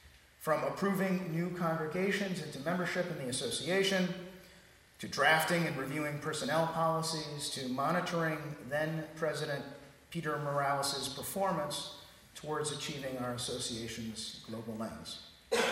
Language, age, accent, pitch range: English, 50-69, American, 125-160 Hz